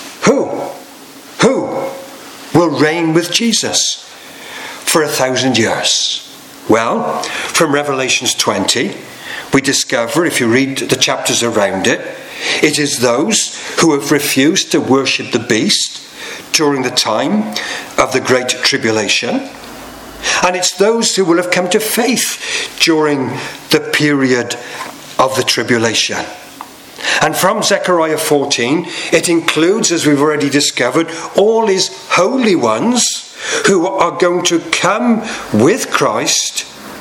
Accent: British